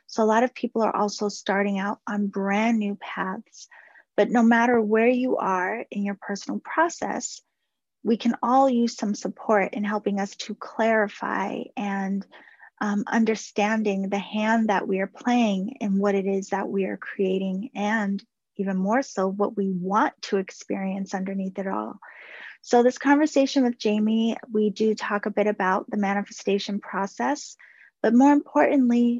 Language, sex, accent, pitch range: English, female, American, 200-235 Hz